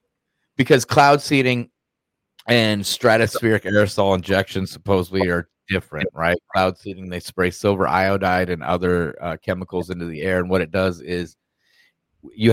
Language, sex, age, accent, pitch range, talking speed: English, male, 30-49, American, 90-110 Hz, 145 wpm